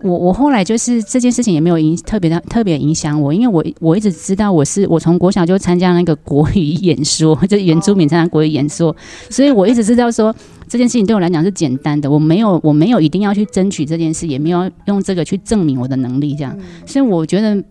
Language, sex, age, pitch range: Chinese, female, 20-39, 150-195 Hz